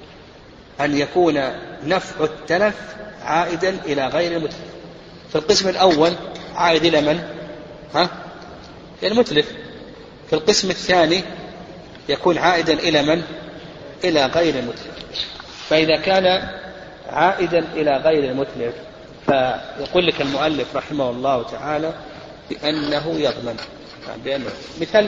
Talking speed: 105 wpm